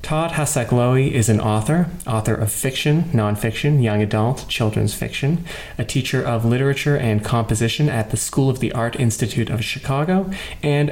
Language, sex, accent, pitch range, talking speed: English, male, American, 115-140 Hz, 160 wpm